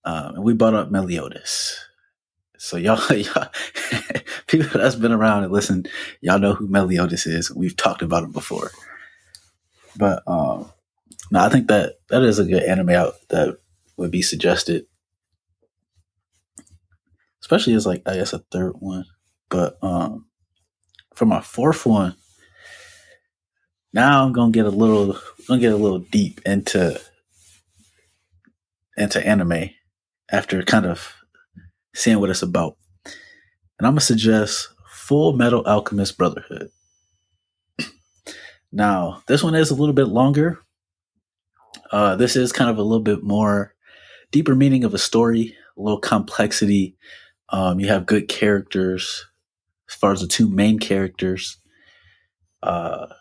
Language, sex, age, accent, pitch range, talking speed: English, male, 20-39, American, 90-110 Hz, 140 wpm